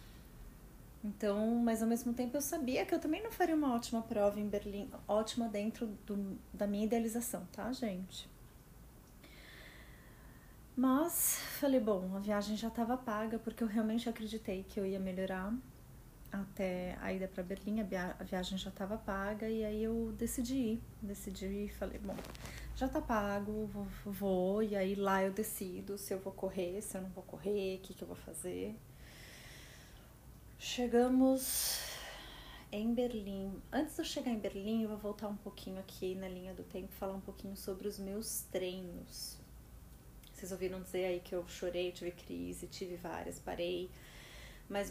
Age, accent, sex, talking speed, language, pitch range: 30-49, Brazilian, female, 165 wpm, Portuguese, 190-225 Hz